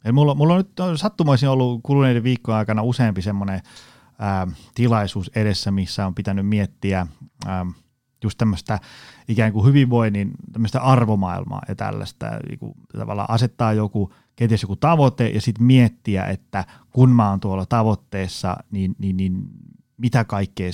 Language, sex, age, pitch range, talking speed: Finnish, male, 30-49, 100-135 Hz, 130 wpm